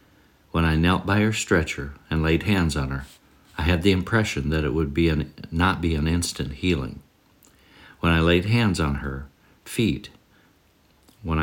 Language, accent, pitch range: English, American, 75-95 Hz